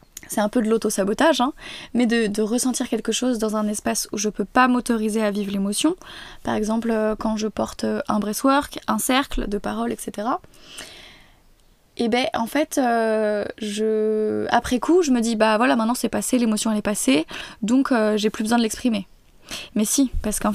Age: 20-39